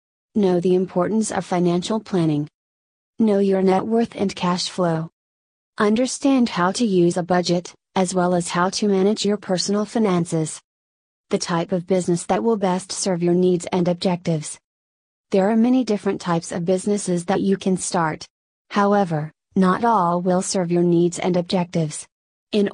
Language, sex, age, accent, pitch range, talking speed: English, female, 30-49, American, 175-200 Hz, 160 wpm